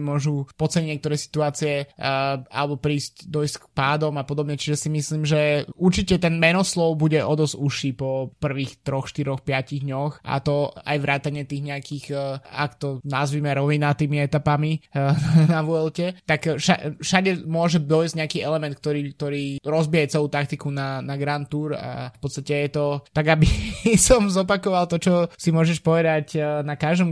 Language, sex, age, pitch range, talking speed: Slovak, male, 20-39, 145-160 Hz, 165 wpm